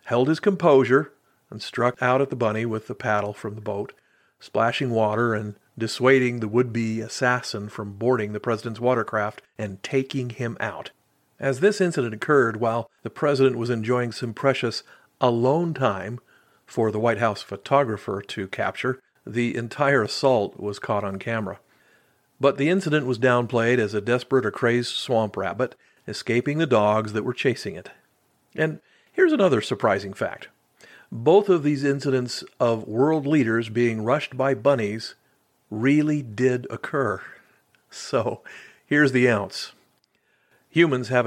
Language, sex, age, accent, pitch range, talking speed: English, male, 50-69, American, 110-135 Hz, 150 wpm